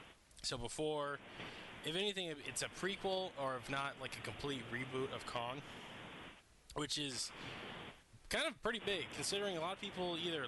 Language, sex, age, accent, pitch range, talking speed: English, male, 20-39, American, 120-155 Hz, 160 wpm